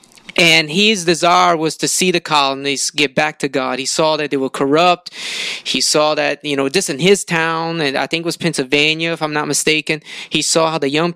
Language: English